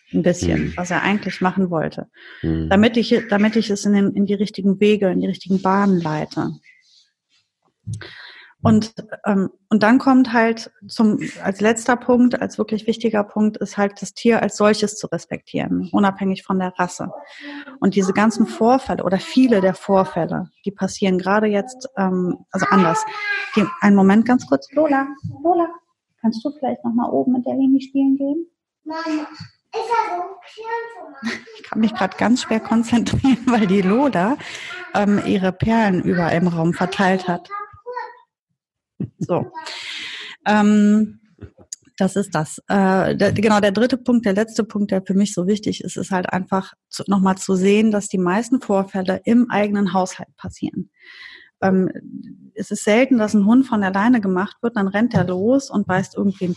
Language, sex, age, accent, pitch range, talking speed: German, female, 30-49, German, 195-250 Hz, 160 wpm